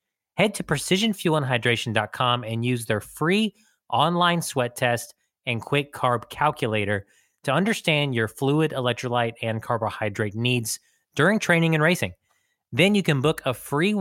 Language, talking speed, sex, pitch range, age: English, 135 wpm, male, 115-160 Hz, 20-39